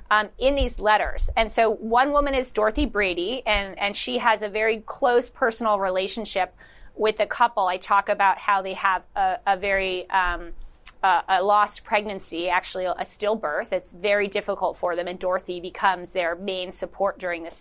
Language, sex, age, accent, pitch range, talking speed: English, female, 30-49, American, 195-235 Hz, 180 wpm